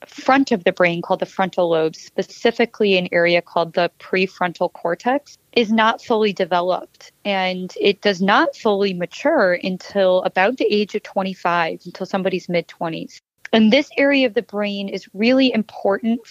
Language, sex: English, female